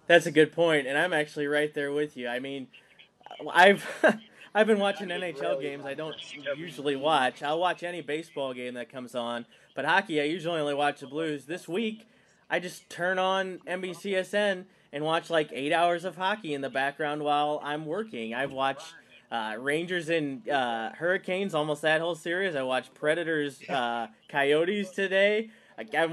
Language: English